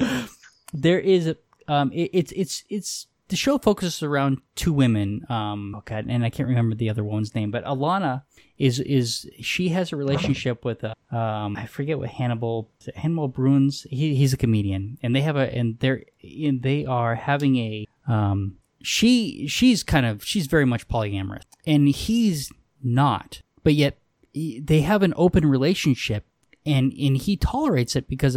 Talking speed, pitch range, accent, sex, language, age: 170 wpm, 120-155 Hz, American, male, English, 20-39